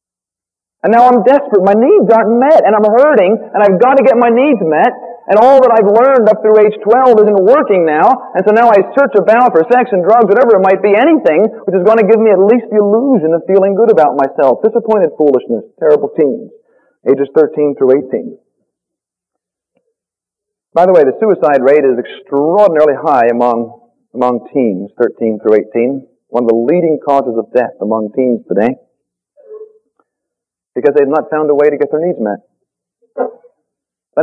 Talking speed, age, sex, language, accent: 185 wpm, 40-59, male, English, American